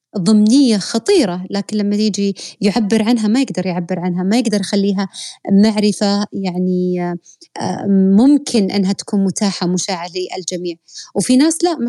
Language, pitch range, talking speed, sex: Arabic, 190-225 Hz, 130 wpm, female